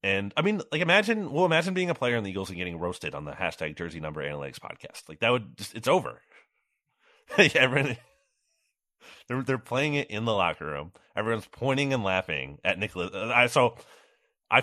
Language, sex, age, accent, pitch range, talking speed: English, male, 30-49, American, 85-130 Hz, 195 wpm